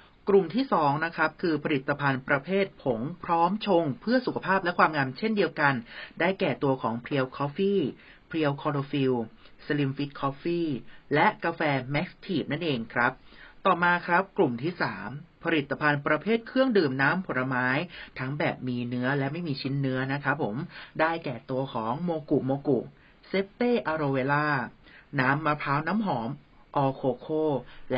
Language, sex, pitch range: Thai, male, 140-175 Hz